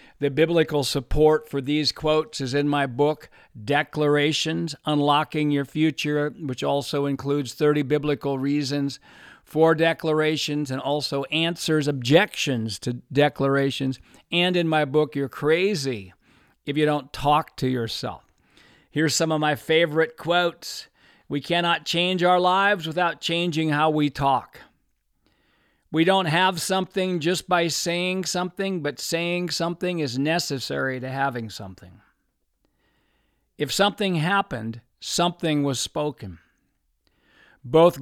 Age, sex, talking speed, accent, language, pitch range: 50-69, male, 125 wpm, American, English, 140-170 Hz